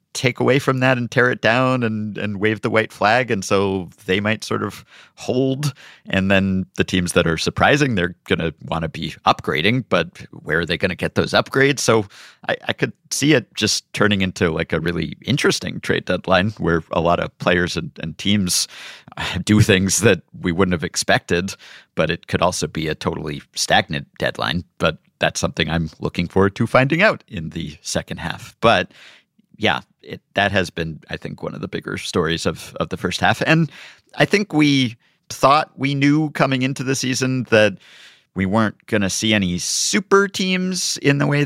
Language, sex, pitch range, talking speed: English, male, 90-135 Hz, 195 wpm